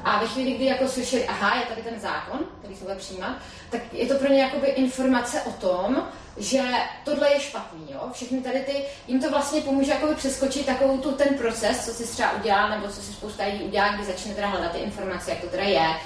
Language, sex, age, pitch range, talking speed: Czech, female, 30-49, 170-245 Hz, 225 wpm